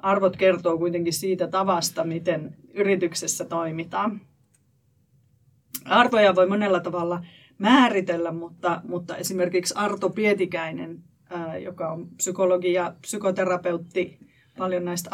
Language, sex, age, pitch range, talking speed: Finnish, female, 30-49, 165-190 Hz, 105 wpm